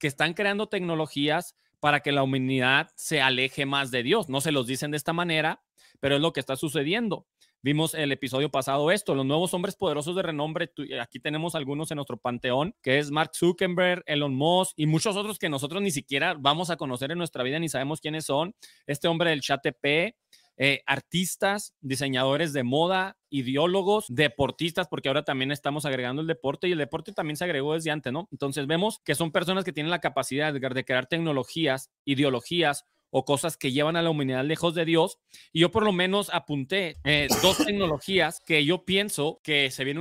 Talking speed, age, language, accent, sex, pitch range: 195 wpm, 30-49, Spanish, Mexican, male, 135-170 Hz